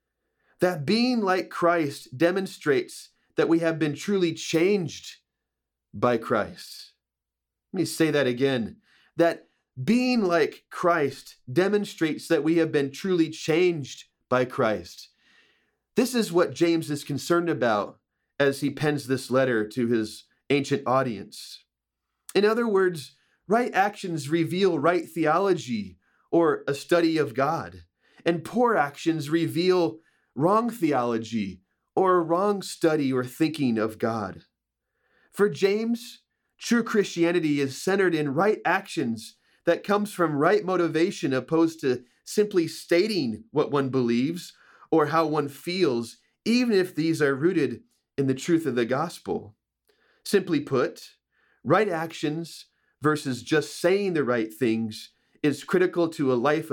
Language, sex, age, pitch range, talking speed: English, male, 30-49, 130-180 Hz, 130 wpm